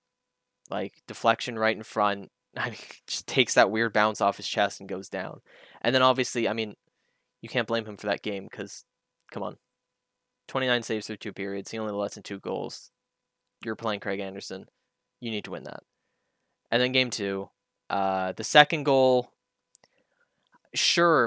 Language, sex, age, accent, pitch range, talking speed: English, male, 10-29, American, 105-130 Hz, 170 wpm